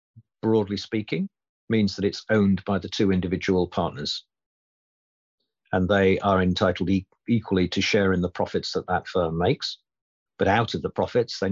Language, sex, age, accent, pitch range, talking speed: English, male, 50-69, British, 90-110 Hz, 160 wpm